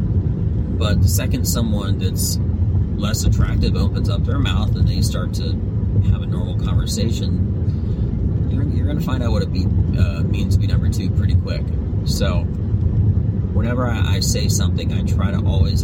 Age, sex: 30-49, male